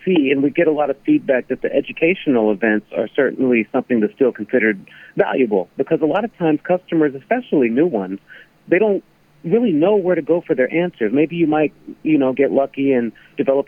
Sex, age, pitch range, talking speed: male, 40-59, 120-155 Hz, 200 wpm